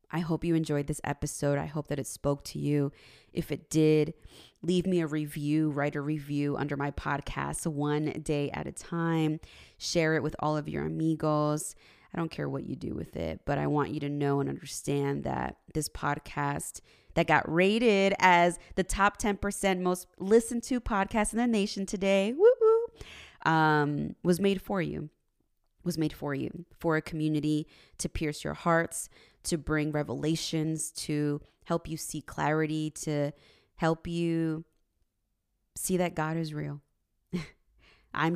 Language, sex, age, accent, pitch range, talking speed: English, female, 20-39, American, 145-170 Hz, 165 wpm